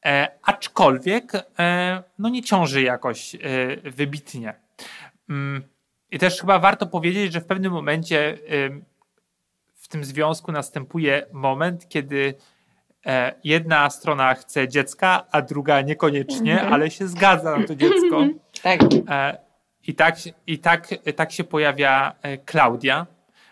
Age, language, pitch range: 30-49, Polish, 140-175 Hz